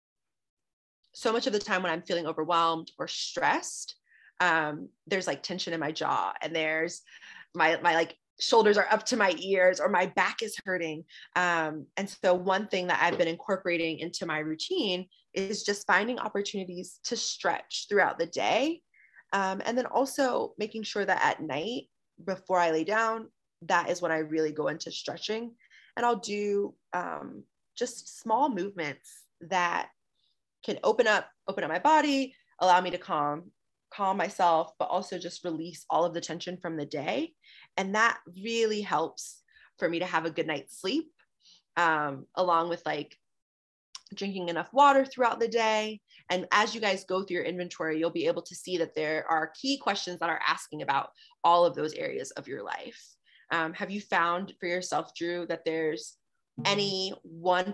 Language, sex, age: English, female, 20-39